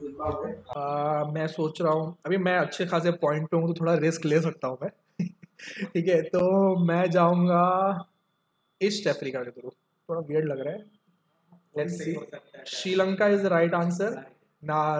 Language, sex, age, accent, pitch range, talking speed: Hindi, male, 20-39, native, 155-185 Hz, 140 wpm